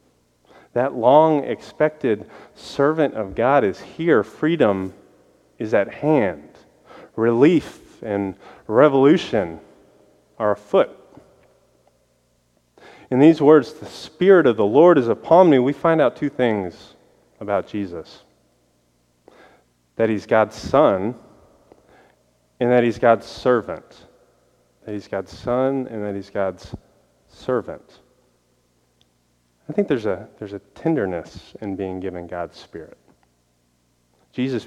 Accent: American